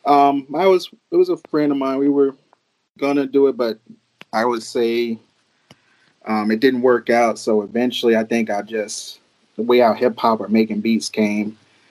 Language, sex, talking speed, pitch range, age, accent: German, male, 190 wpm, 105-120 Hz, 30-49, American